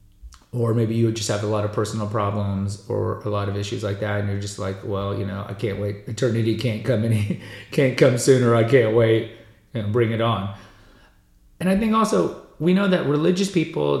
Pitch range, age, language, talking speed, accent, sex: 105-125 Hz, 30-49, English, 220 wpm, American, male